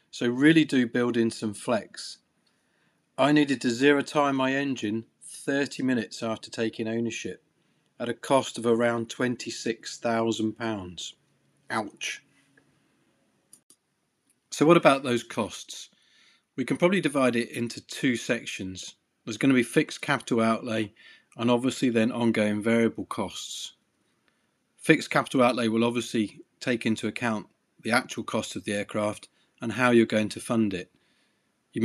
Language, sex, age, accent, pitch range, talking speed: English, male, 40-59, British, 110-130 Hz, 140 wpm